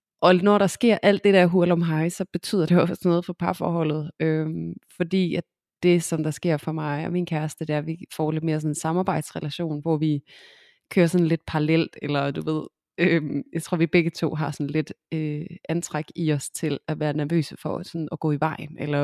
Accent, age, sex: native, 20-39, female